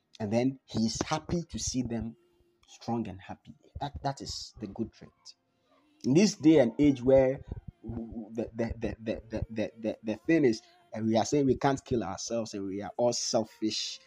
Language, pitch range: English, 105-155 Hz